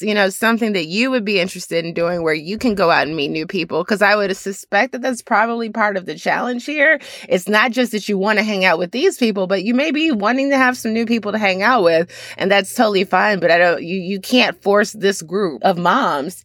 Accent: American